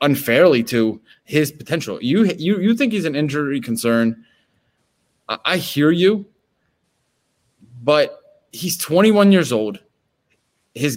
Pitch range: 110-170 Hz